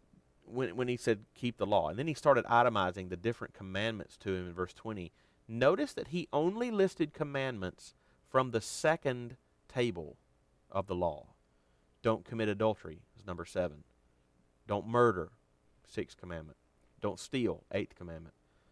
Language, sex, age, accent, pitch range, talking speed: English, male, 40-59, American, 75-115 Hz, 150 wpm